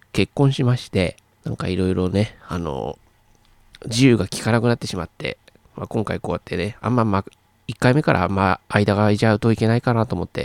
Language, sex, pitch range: Japanese, male, 90-110 Hz